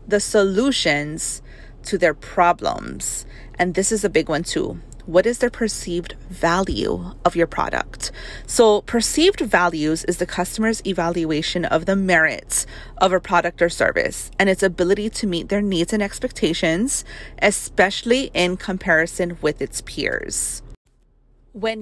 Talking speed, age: 140 wpm, 30-49